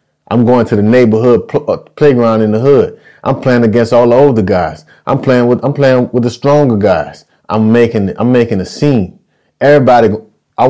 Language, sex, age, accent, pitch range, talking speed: English, male, 30-49, American, 110-130 Hz, 185 wpm